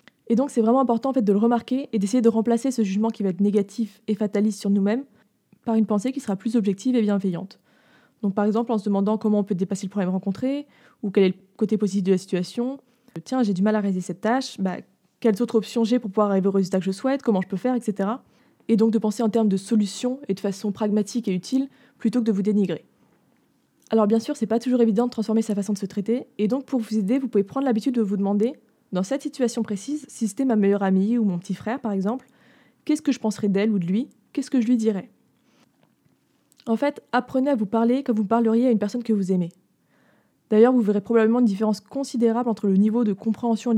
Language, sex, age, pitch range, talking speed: French, female, 20-39, 205-245 Hz, 250 wpm